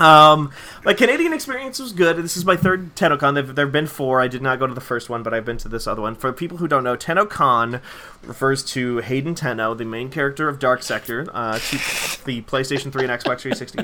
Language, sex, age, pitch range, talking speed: English, male, 20-39, 130-160 Hz, 230 wpm